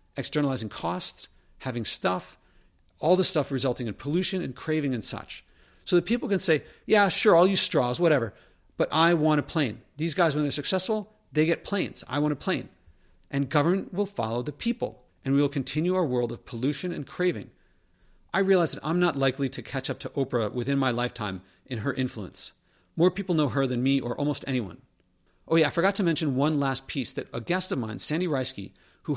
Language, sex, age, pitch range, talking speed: English, male, 50-69, 120-160 Hz, 210 wpm